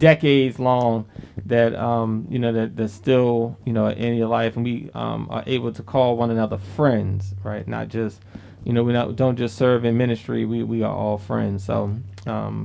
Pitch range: 115-145 Hz